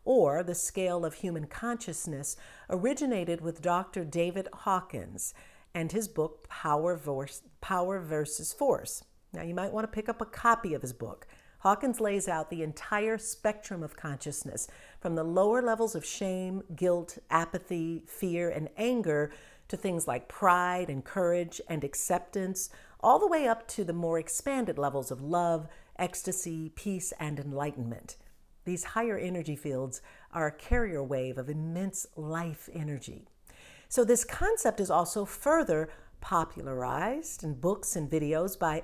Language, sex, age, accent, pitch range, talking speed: English, female, 50-69, American, 150-200 Hz, 145 wpm